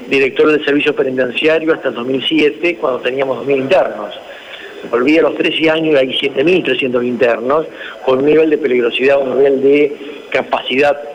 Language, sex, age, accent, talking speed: Spanish, male, 50-69, Argentinian, 155 wpm